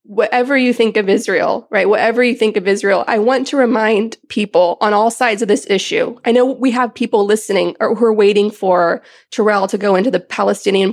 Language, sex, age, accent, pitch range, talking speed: English, female, 20-39, American, 195-235 Hz, 215 wpm